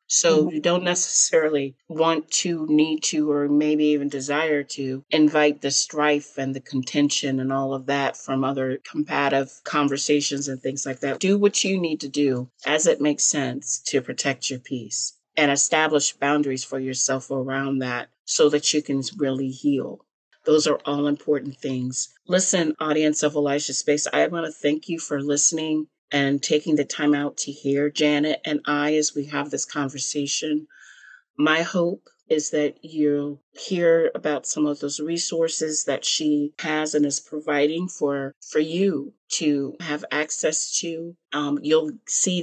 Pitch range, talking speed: 140-155 Hz, 165 wpm